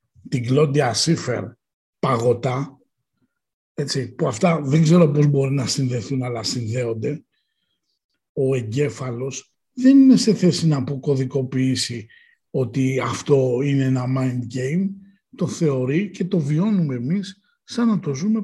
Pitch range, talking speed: 125-185 Hz, 125 wpm